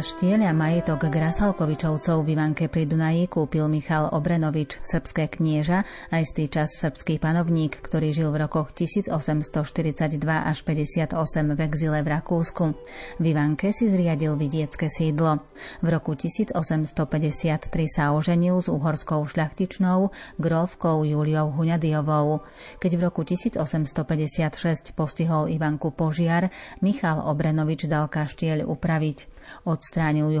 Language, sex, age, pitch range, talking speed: Slovak, female, 30-49, 155-170 Hz, 120 wpm